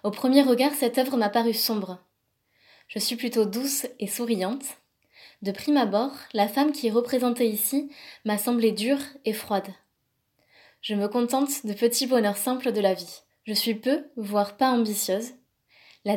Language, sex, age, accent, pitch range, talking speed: French, female, 20-39, French, 215-255 Hz, 165 wpm